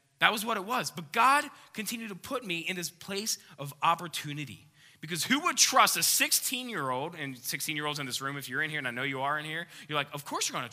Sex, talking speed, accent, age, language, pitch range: male, 250 wpm, American, 20-39, English, 140-215 Hz